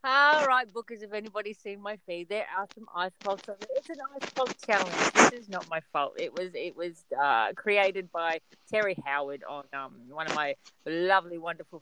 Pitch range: 160-215 Hz